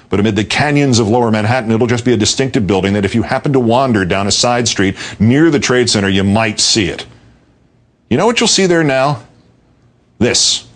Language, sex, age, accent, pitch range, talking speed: English, male, 50-69, American, 105-130 Hz, 220 wpm